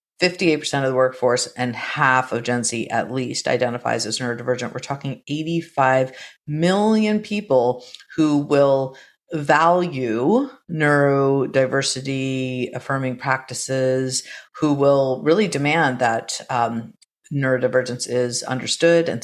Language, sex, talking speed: English, female, 105 wpm